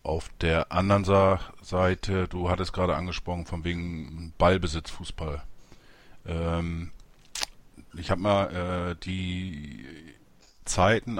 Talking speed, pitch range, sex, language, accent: 90 wpm, 85-105 Hz, male, German, German